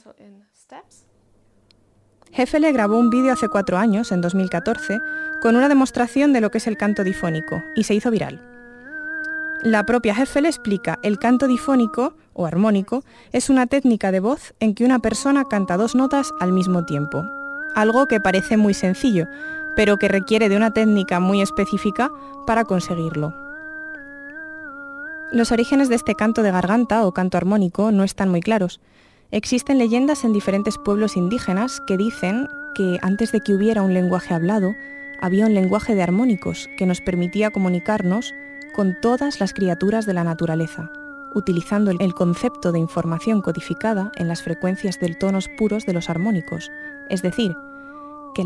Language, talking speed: Spanish, 155 wpm